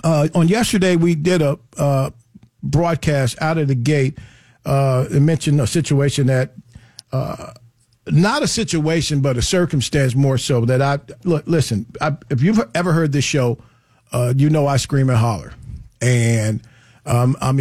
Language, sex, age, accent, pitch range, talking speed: English, male, 50-69, American, 120-145 Hz, 165 wpm